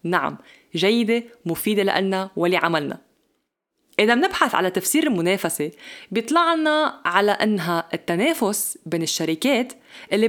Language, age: English, 20-39